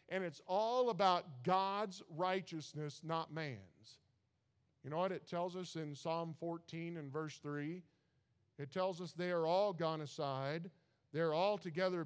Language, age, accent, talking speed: English, 50-69, American, 155 wpm